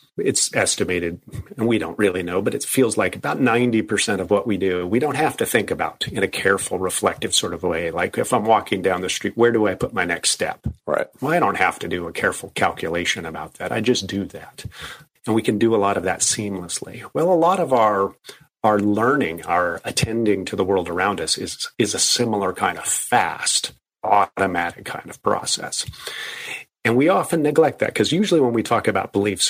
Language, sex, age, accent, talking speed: English, male, 40-59, American, 215 wpm